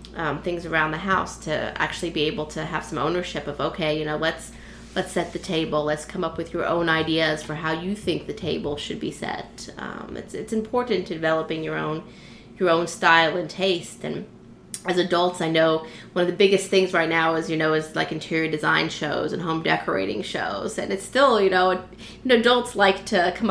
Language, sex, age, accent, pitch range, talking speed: English, female, 20-39, American, 165-210 Hz, 215 wpm